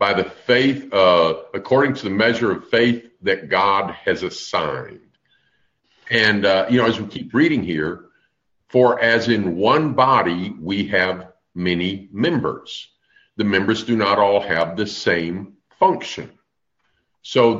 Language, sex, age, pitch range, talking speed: English, male, 50-69, 95-120 Hz, 145 wpm